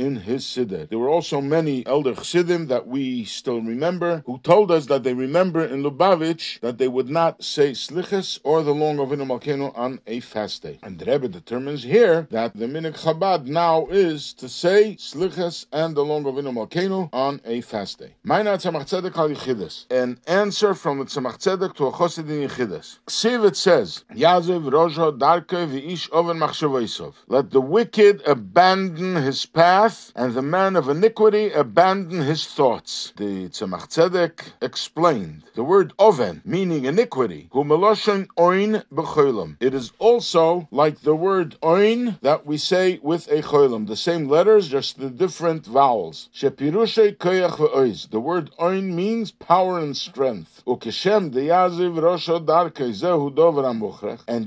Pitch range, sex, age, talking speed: 140-185 Hz, male, 50-69, 150 wpm